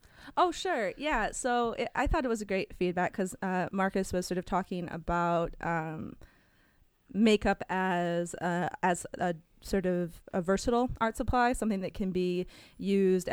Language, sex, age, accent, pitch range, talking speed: English, female, 20-39, American, 175-195 Hz, 155 wpm